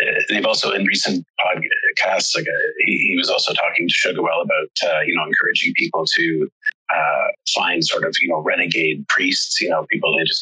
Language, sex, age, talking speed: English, male, 30-49, 195 wpm